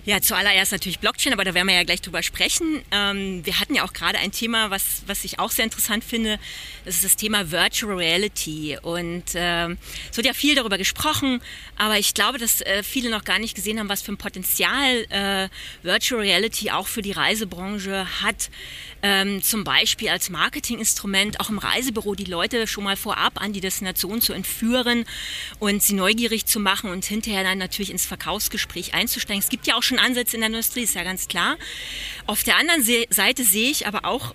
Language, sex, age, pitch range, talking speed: German, female, 30-49, 190-235 Hz, 200 wpm